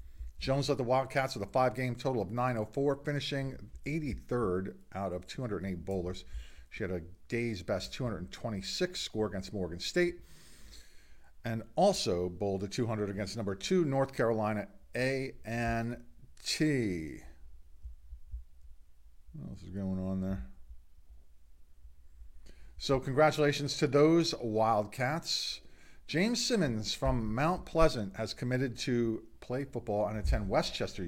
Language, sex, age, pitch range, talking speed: English, male, 50-69, 85-135 Hz, 120 wpm